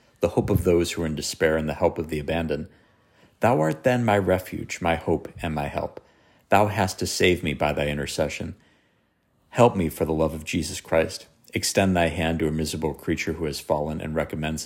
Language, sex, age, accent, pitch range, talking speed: English, male, 50-69, American, 80-95 Hz, 215 wpm